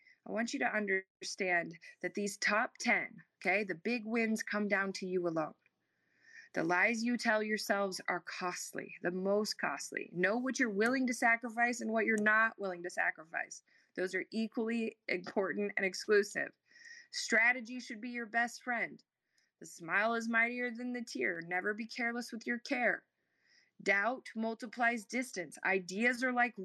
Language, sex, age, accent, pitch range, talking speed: English, female, 20-39, American, 190-235 Hz, 160 wpm